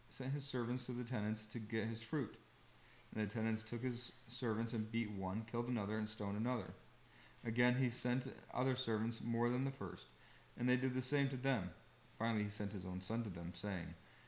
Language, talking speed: English, 205 wpm